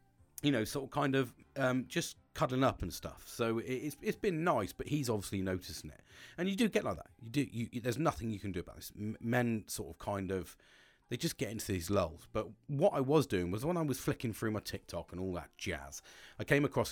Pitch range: 95-130 Hz